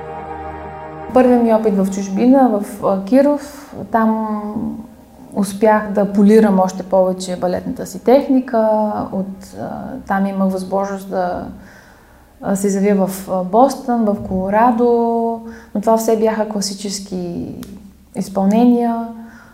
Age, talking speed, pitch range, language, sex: 20-39, 100 wpm, 190-230 Hz, Bulgarian, female